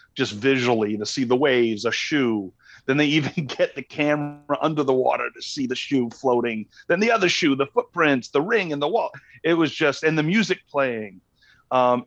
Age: 40-59